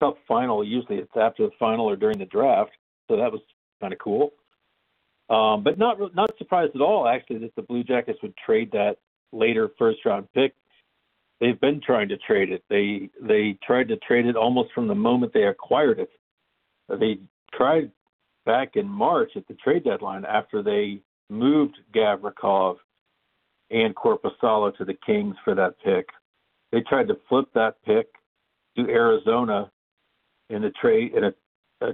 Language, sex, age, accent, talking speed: English, male, 50-69, American, 165 wpm